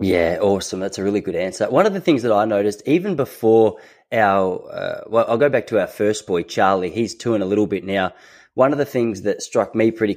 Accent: Australian